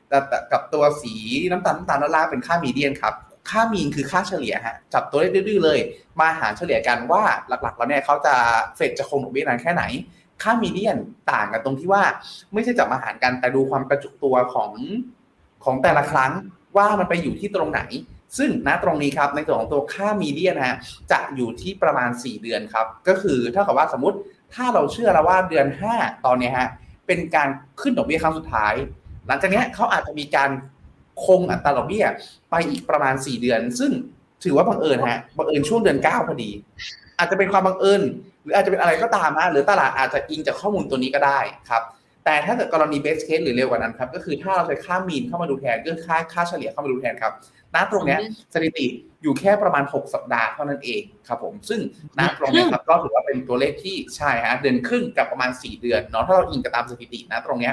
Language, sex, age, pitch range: Thai, male, 20-39, 130-195 Hz